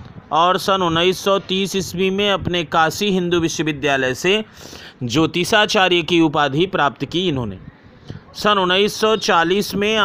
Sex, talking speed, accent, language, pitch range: male, 115 wpm, native, Hindi, 160-190 Hz